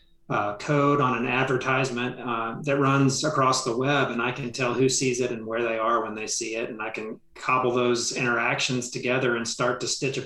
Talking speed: 220 wpm